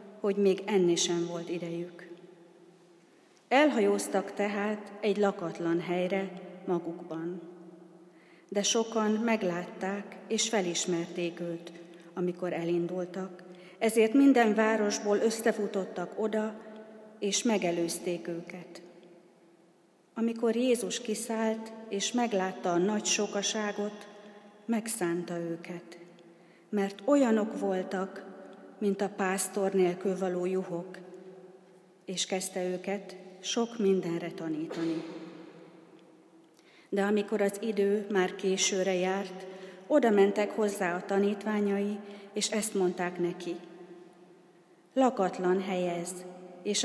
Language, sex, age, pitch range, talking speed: Hungarian, female, 40-59, 175-205 Hz, 90 wpm